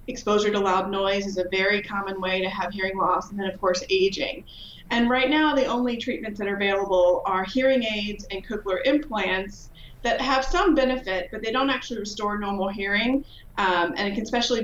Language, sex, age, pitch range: English, female, 30-49, 195-240 Hz